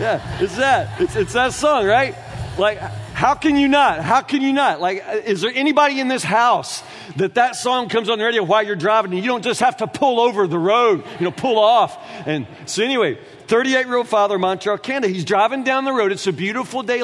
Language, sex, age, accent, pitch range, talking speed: English, male, 40-59, American, 195-270 Hz, 225 wpm